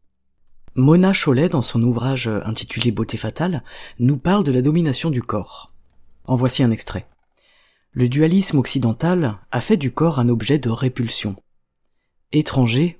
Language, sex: French, female